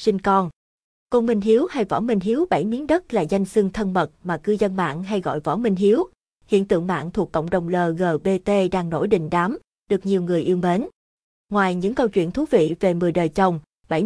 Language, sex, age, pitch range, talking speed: Vietnamese, female, 20-39, 180-225 Hz, 225 wpm